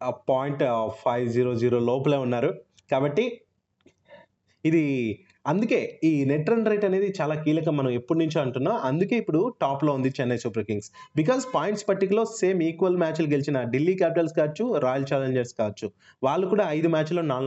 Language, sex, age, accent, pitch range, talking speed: Telugu, male, 20-39, native, 125-170 Hz, 150 wpm